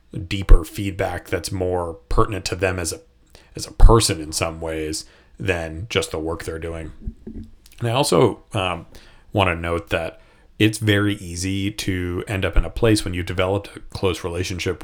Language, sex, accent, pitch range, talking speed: English, male, American, 85-105 Hz, 180 wpm